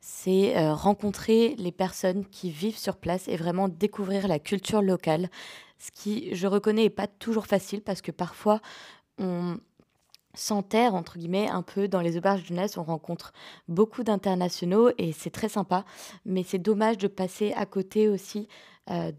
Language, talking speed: French, 170 wpm